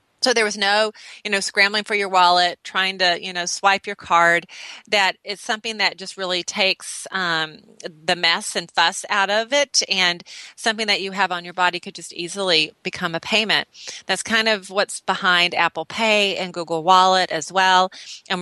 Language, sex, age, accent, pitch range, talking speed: English, female, 30-49, American, 165-205 Hz, 190 wpm